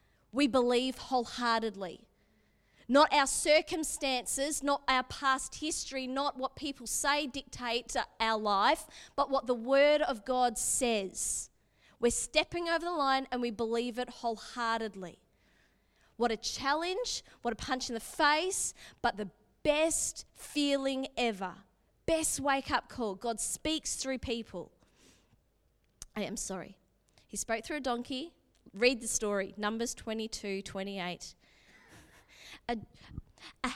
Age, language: 20-39, English